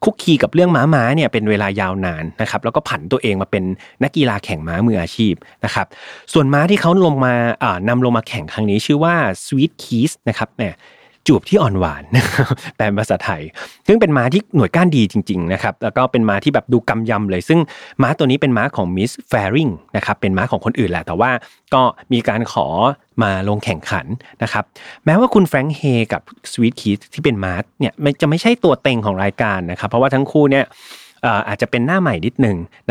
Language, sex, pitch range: Thai, male, 105-145 Hz